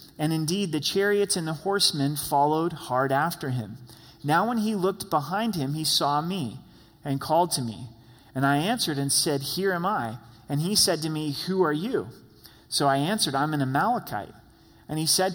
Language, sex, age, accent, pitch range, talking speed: English, male, 30-49, American, 140-185 Hz, 190 wpm